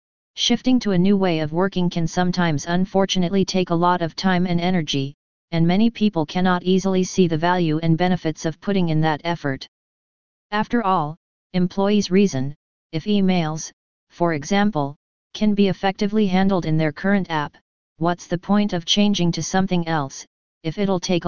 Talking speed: 165 wpm